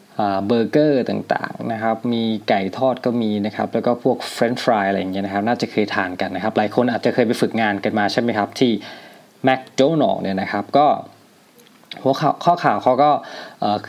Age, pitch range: 20-39, 105-130 Hz